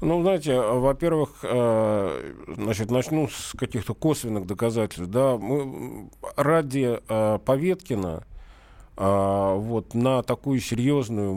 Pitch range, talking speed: 110-145 Hz, 105 wpm